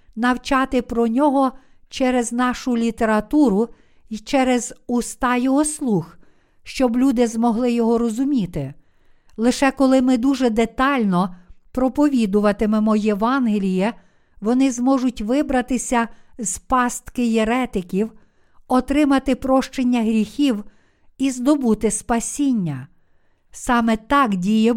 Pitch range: 215-265 Hz